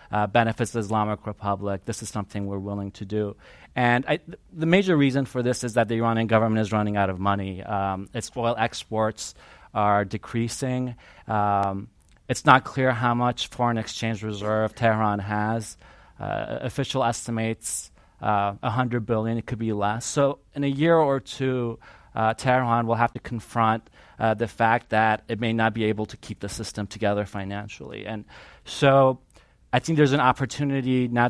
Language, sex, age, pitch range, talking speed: English, male, 30-49, 105-125 Hz, 175 wpm